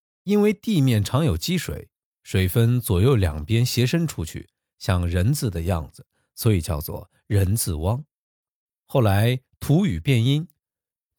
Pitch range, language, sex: 95-140 Hz, Chinese, male